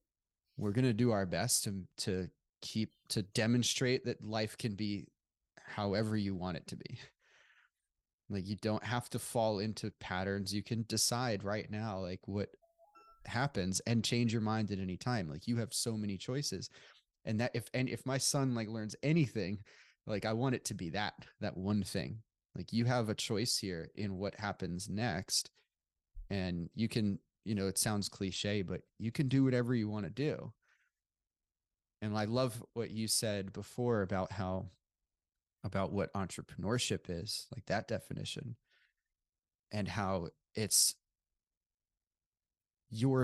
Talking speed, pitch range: 160 wpm, 95-120 Hz